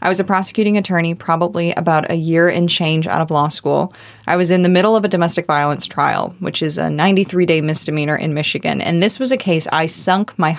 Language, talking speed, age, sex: English, 225 wpm, 20-39, female